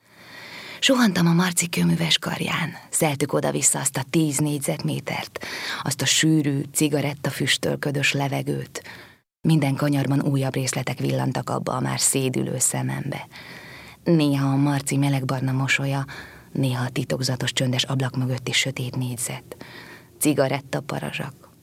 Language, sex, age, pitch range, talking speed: Hungarian, female, 20-39, 125-145 Hz, 115 wpm